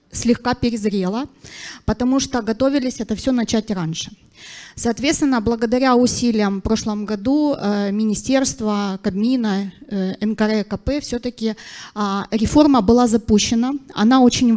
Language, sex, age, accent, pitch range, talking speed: Ukrainian, female, 20-39, native, 215-260 Hz, 105 wpm